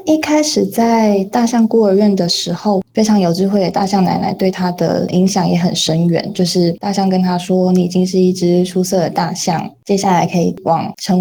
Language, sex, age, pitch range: Chinese, female, 20-39, 180-215 Hz